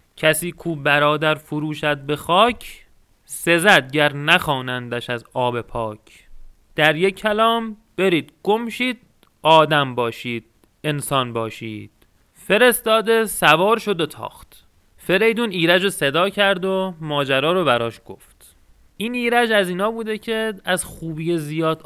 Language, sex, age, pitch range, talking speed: Persian, male, 30-49, 130-185 Hz, 120 wpm